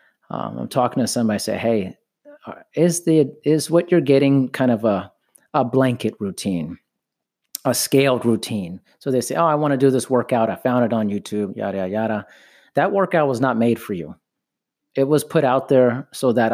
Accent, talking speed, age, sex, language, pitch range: American, 200 wpm, 40-59, male, English, 110-140 Hz